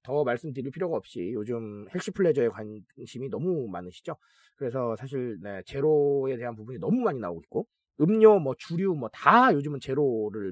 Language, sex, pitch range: Korean, male, 155-230 Hz